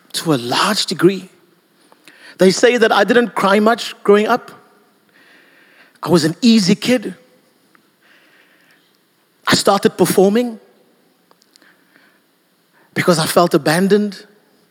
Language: English